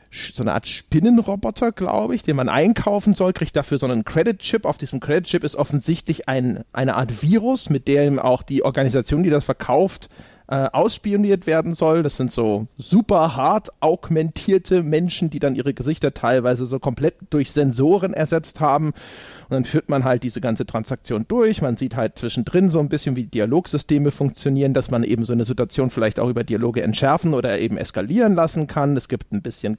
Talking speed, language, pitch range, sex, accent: 185 wpm, German, 125-160 Hz, male, German